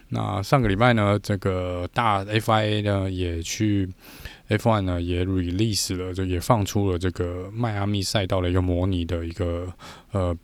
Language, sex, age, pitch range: Chinese, male, 20-39, 90-105 Hz